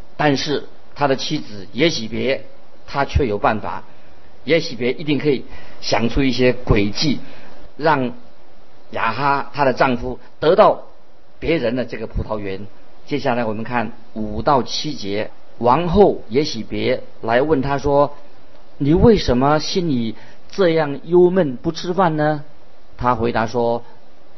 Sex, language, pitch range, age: male, Chinese, 120-150 Hz, 50-69